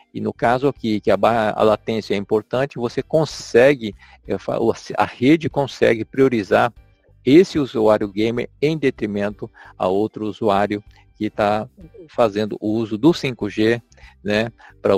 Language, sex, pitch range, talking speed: Portuguese, male, 105-135 Hz, 125 wpm